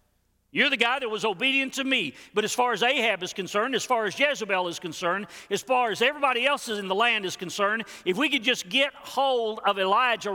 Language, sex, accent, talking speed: English, male, American, 225 wpm